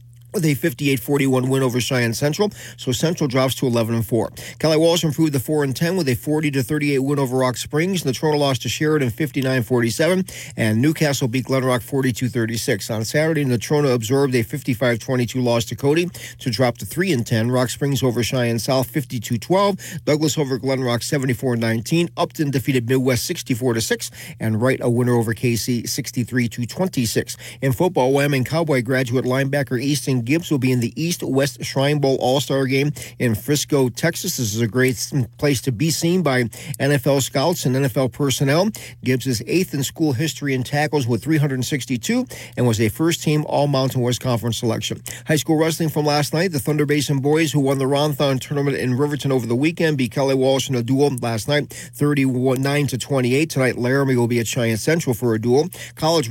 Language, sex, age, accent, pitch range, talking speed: English, male, 40-59, American, 125-150 Hz, 170 wpm